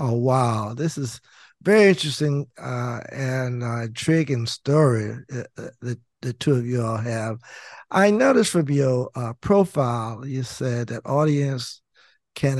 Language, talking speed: English, 140 wpm